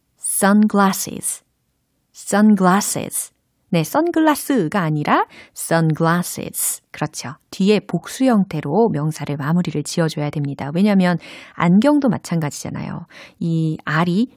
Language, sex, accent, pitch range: Korean, female, native, 155-230 Hz